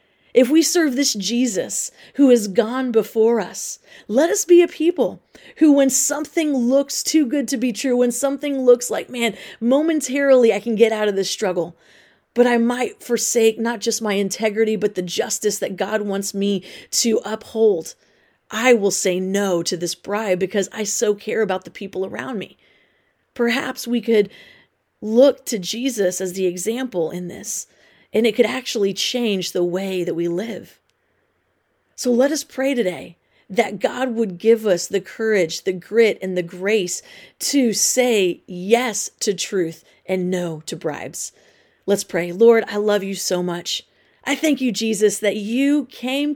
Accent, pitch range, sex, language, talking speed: American, 190-245 Hz, female, English, 170 wpm